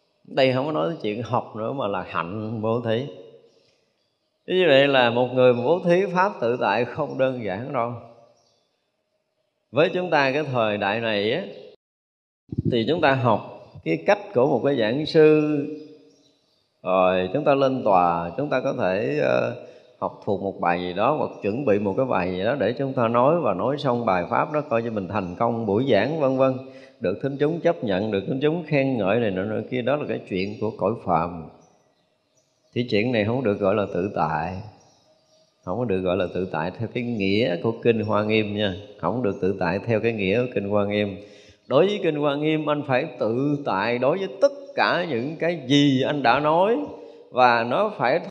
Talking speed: 205 wpm